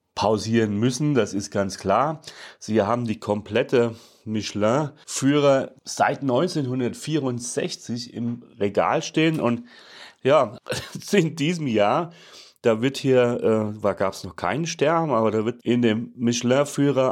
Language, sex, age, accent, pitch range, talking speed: German, male, 30-49, German, 110-140 Hz, 130 wpm